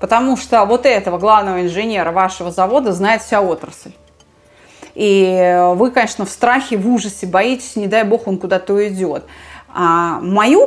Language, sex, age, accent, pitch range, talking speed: Russian, female, 20-39, native, 185-240 Hz, 150 wpm